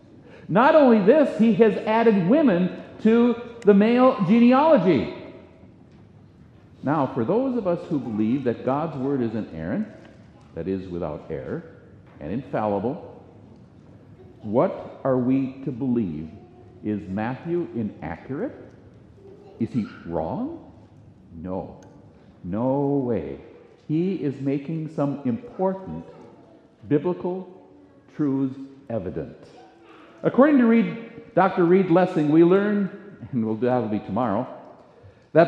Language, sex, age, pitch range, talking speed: English, male, 60-79, 135-225 Hz, 115 wpm